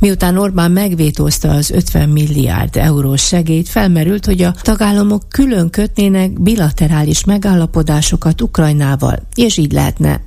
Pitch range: 135-185 Hz